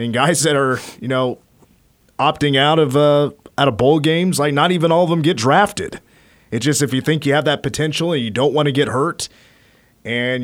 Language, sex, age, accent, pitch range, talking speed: English, male, 30-49, American, 120-150 Hz, 225 wpm